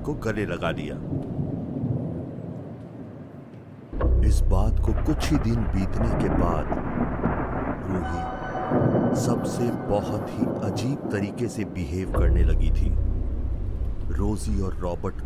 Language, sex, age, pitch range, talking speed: Hindi, male, 40-59, 90-115 Hz, 105 wpm